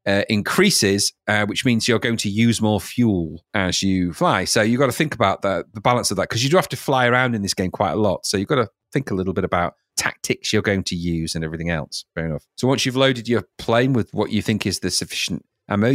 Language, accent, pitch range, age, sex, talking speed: English, British, 105-155 Hz, 40-59, male, 265 wpm